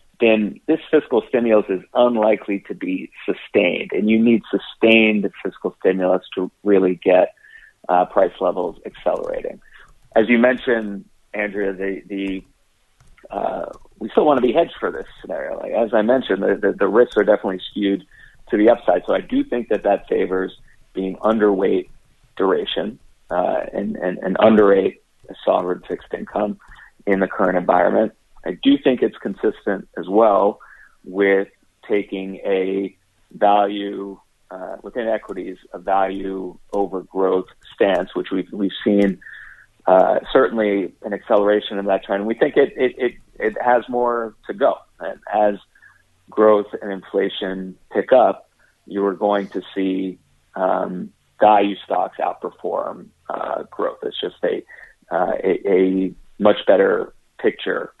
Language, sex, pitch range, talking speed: English, male, 95-115 Hz, 145 wpm